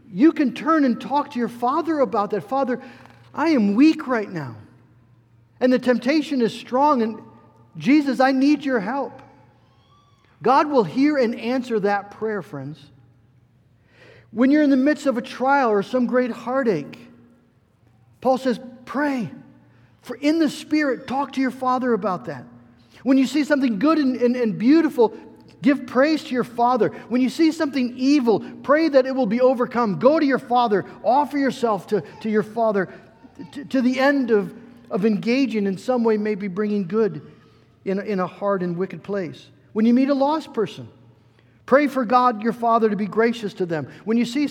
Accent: American